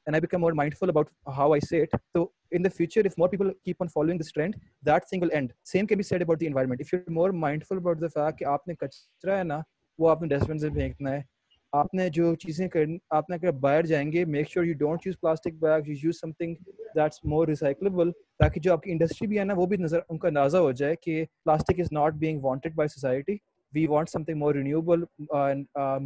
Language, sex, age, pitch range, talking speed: Urdu, male, 20-39, 150-190 Hz, 200 wpm